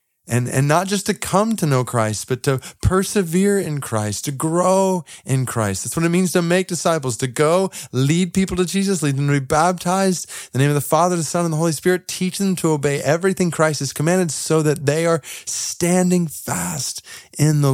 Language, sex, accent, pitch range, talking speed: English, male, American, 105-155 Hz, 215 wpm